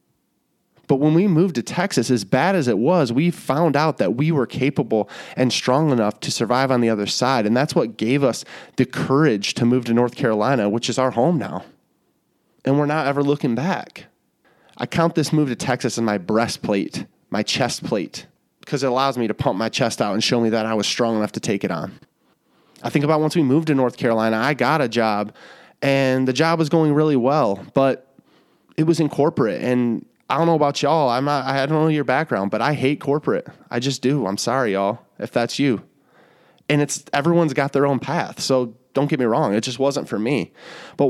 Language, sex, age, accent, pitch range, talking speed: English, male, 20-39, American, 120-150 Hz, 220 wpm